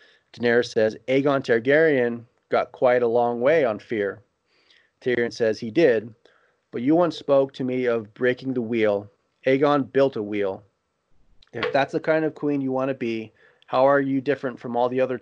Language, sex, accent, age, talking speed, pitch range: English, male, American, 30-49, 185 wpm, 115-135 Hz